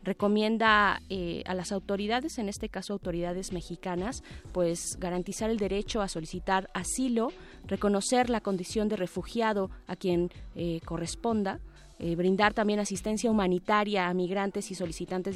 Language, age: Spanish, 20-39